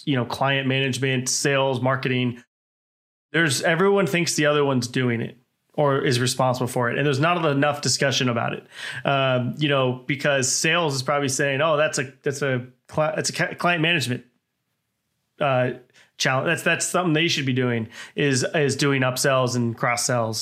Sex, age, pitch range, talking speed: male, 20-39, 125-150 Hz, 175 wpm